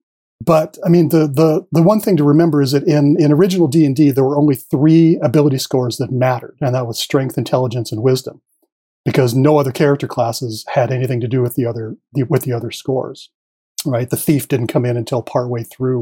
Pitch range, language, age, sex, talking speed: 125-155 Hz, English, 40-59, male, 210 wpm